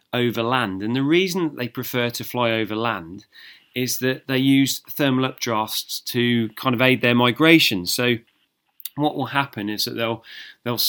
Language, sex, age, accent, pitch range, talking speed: English, male, 30-49, British, 115-140 Hz, 170 wpm